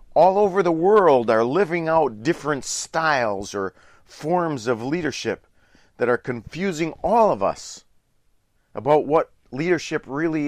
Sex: male